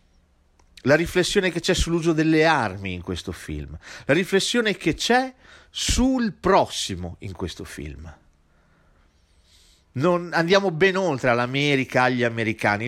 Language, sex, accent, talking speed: Italian, male, native, 120 wpm